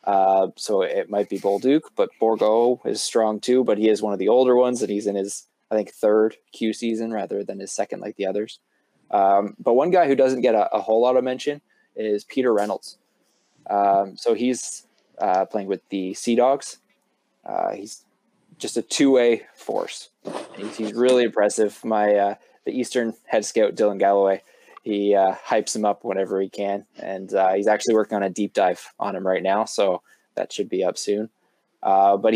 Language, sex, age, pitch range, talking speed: English, male, 20-39, 100-115 Hz, 195 wpm